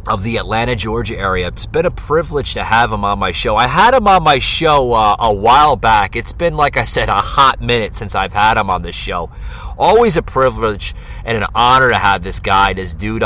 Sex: male